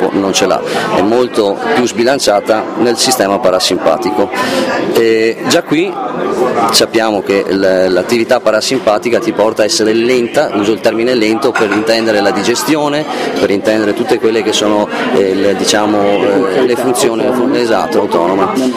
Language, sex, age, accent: Italian, male, 30-49, native